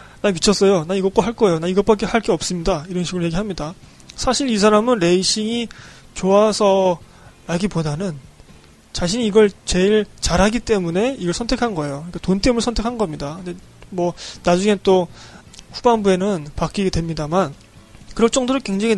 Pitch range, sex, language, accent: 165-215 Hz, male, Korean, native